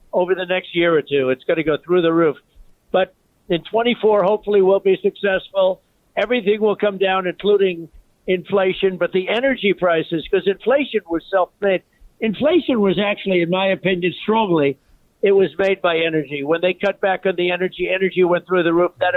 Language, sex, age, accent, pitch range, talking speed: English, male, 60-79, American, 170-200 Hz, 185 wpm